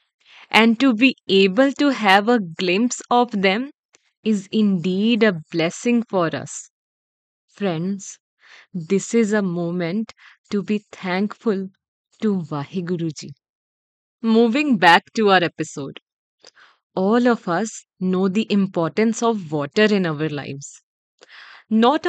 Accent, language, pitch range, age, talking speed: Indian, English, 170-220 Hz, 20-39, 115 wpm